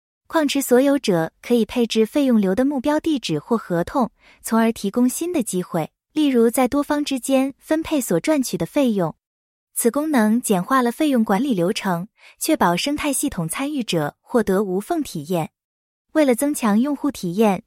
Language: English